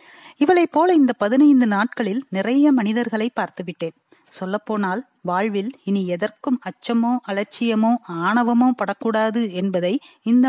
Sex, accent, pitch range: female, native, 205-275 Hz